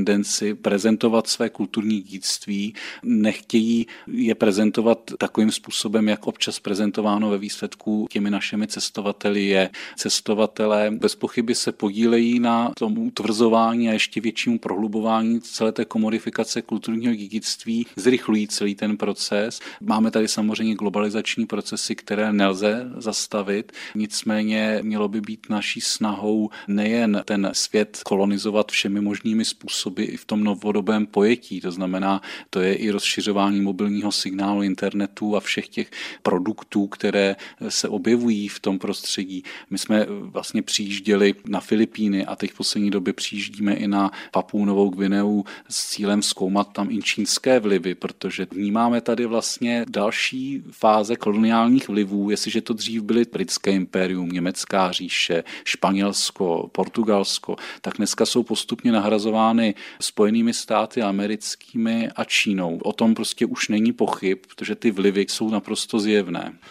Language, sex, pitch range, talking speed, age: Czech, male, 100-115 Hz, 135 wpm, 40-59